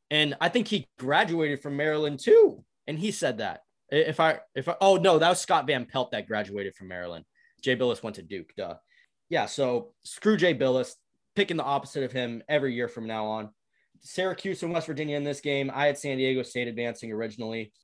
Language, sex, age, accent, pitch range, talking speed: English, male, 20-39, American, 110-145 Hz, 210 wpm